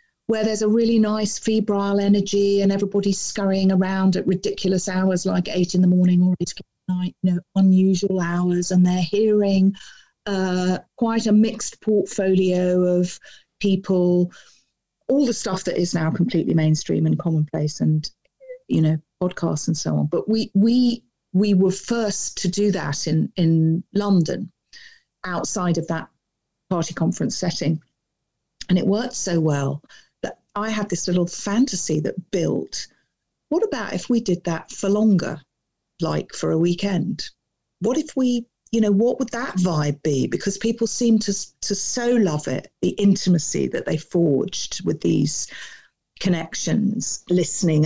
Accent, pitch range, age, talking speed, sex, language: British, 170-215 Hz, 40-59, 155 wpm, female, English